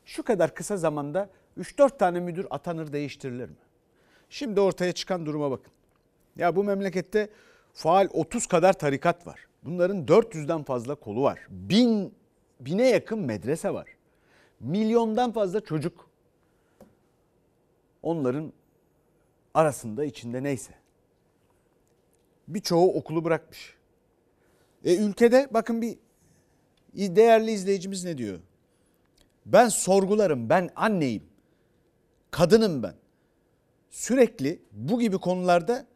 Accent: native